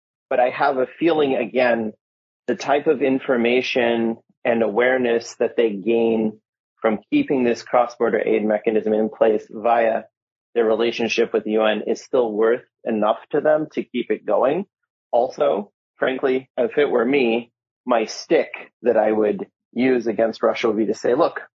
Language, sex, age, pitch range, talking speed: English, male, 30-49, 110-135 Hz, 165 wpm